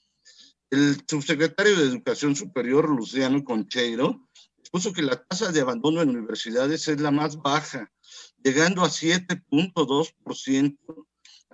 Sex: male